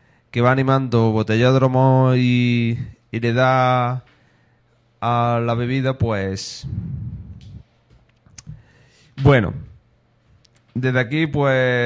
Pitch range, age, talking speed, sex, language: 115-130 Hz, 20-39, 80 wpm, male, Spanish